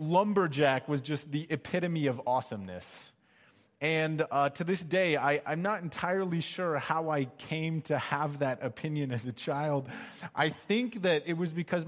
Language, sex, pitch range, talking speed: English, male, 130-165 Hz, 165 wpm